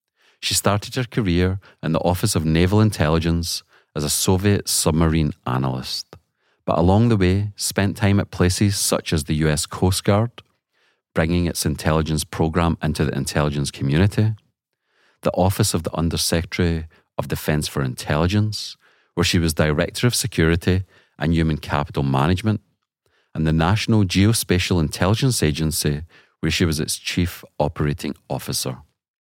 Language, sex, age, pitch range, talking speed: English, male, 40-59, 75-100 Hz, 140 wpm